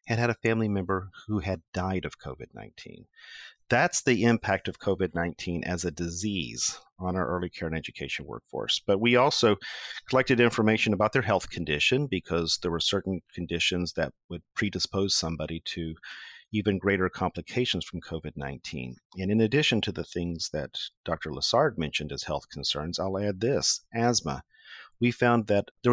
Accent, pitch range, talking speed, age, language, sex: American, 85-110 Hz, 160 wpm, 40-59, English, male